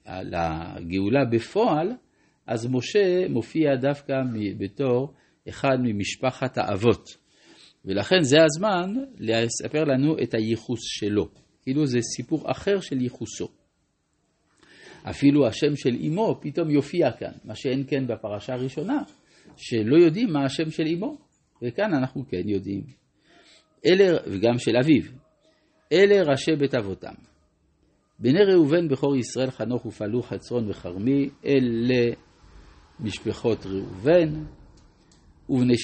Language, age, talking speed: Hebrew, 50-69, 110 wpm